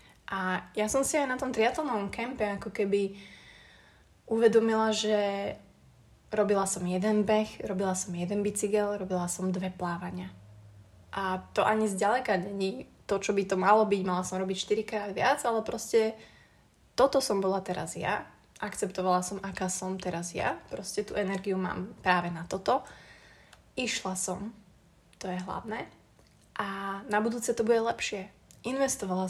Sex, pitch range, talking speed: female, 185-215 Hz, 150 wpm